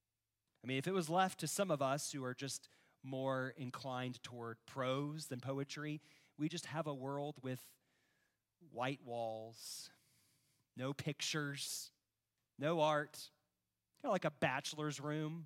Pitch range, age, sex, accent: 115-150 Hz, 40-59, male, American